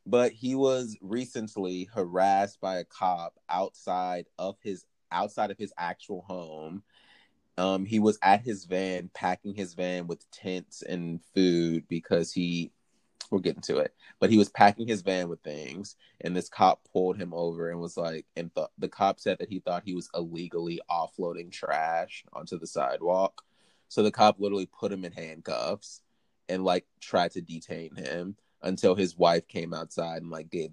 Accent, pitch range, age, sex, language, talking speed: American, 85-100 Hz, 20-39, male, English, 175 wpm